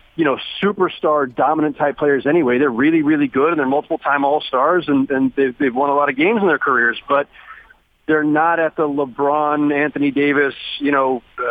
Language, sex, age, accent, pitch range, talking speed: English, male, 40-59, American, 140-195 Hz, 210 wpm